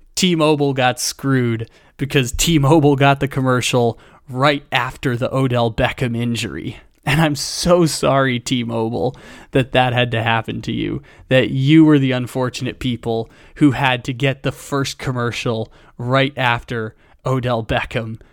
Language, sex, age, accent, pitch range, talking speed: English, male, 20-39, American, 125-155 Hz, 140 wpm